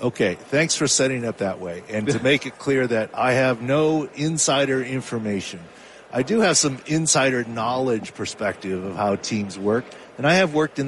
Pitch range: 105-130 Hz